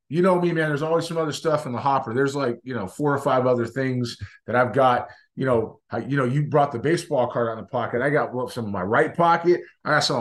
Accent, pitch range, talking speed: American, 120-150 Hz, 270 wpm